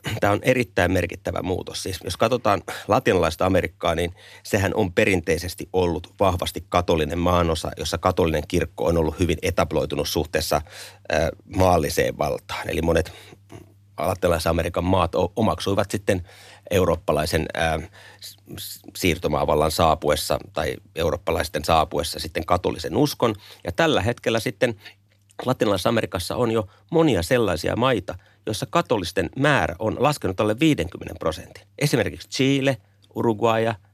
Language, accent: Finnish, native